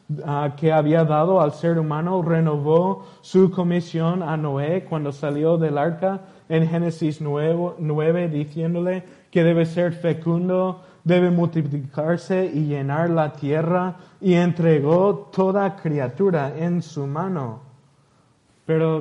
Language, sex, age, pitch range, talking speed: Spanish, male, 20-39, 150-180 Hz, 120 wpm